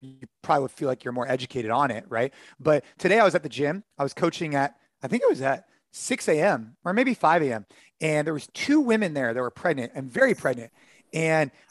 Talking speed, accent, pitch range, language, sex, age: 235 wpm, American, 130-165 Hz, English, male, 30-49